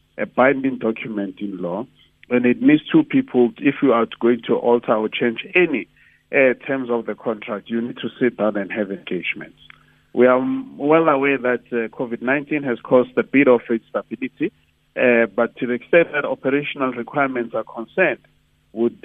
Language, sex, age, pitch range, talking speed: English, male, 50-69, 115-145 Hz, 175 wpm